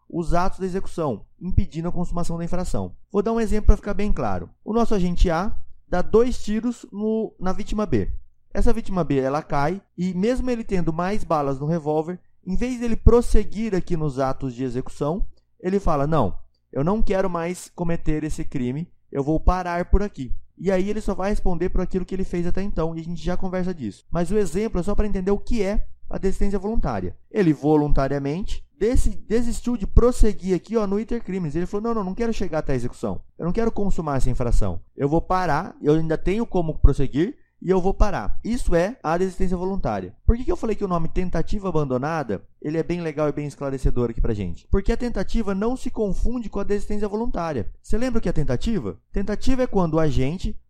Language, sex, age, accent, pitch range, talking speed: Portuguese, male, 20-39, Brazilian, 150-210 Hz, 215 wpm